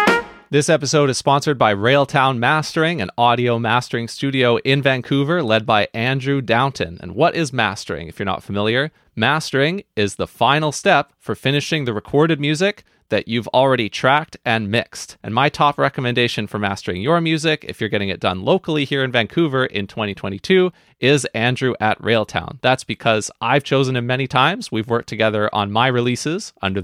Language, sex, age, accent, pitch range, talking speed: English, male, 30-49, American, 110-145 Hz, 175 wpm